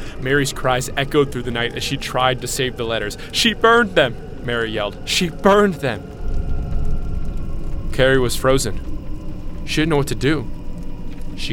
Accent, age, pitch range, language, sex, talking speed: American, 20-39, 110-140 Hz, English, male, 160 wpm